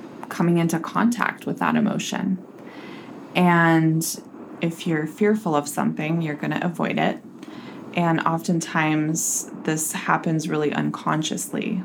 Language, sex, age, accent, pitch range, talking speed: English, female, 20-39, American, 155-200 Hz, 115 wpm